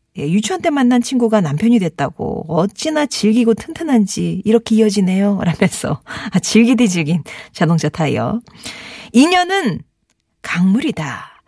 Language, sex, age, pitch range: Korean, female, 40-59, 170-245 Hz